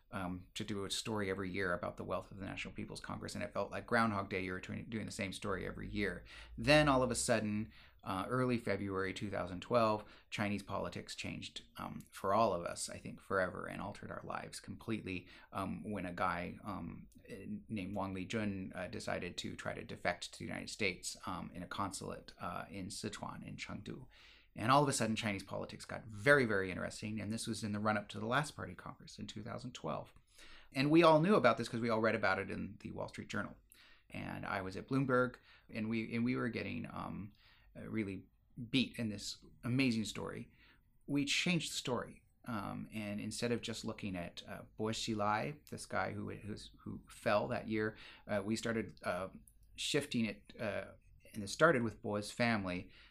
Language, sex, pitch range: English, male, 100-120 Hz